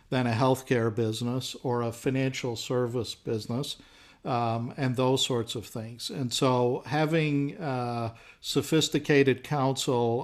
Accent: American